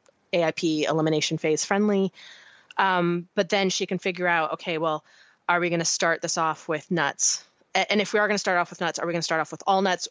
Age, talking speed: 30-49, 250 wpm